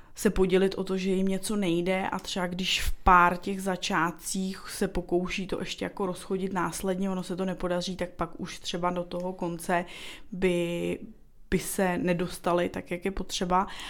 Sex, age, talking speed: female, 20-39, 175 wpm